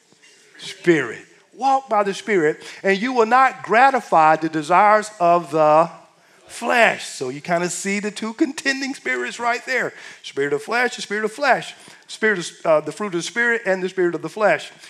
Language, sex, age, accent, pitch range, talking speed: English, male, 50-69, American, 175-270 Hz, 190 wpm